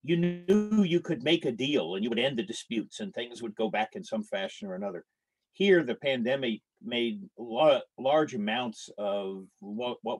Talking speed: 190 wpm